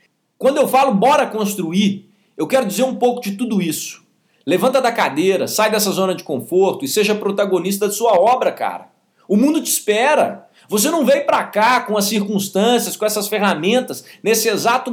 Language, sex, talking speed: Portuguese, male, 180 wpm